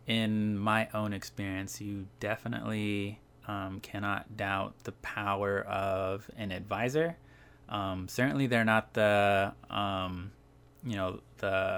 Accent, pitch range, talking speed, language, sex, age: American, 95-110 Hz, 115 wpm, English, male, 20-39